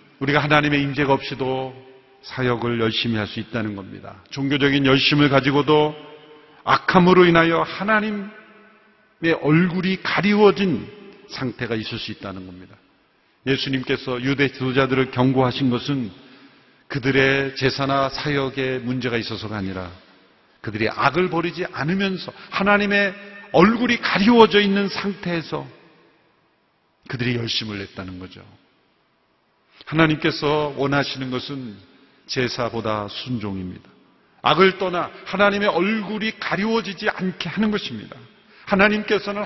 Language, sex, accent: Korean, male, native